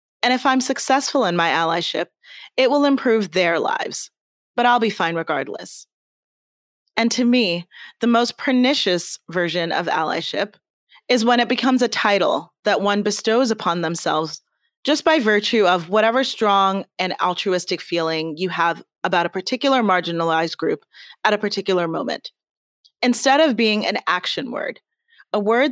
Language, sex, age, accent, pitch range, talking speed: English, female, 30-49, American, 180-245 Hz, 150 wpm